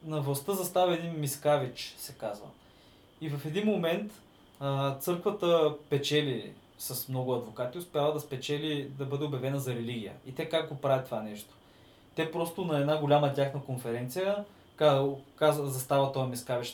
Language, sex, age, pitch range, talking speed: Bulgarian, male, 20-39, 125-150 Hz, 155 wpm